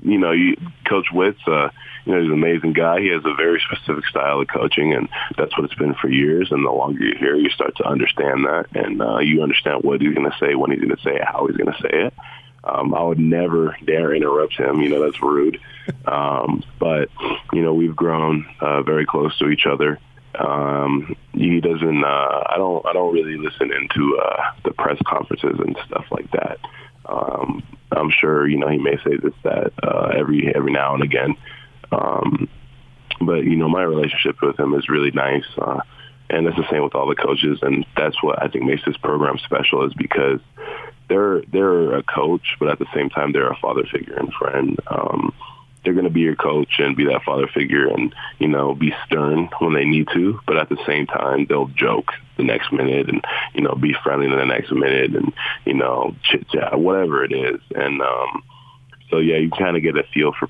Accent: American